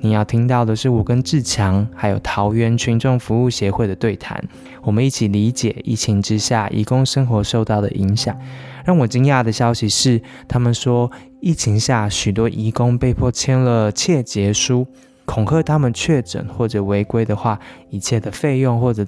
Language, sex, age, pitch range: Chinese, male, 20-39, 105-125 Hz